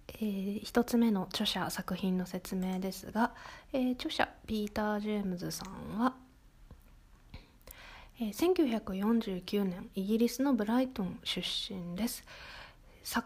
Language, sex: Japanese, female